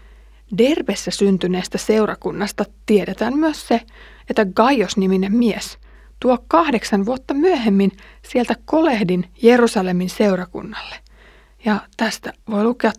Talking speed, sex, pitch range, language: 95 wpm, female, 195-235 Hz, Finnish